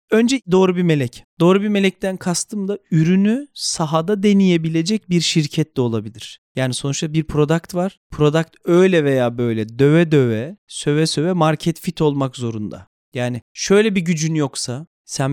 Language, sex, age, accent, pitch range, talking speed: Turkish, male, 40-59, native, 135-180 Hz, 155 wpm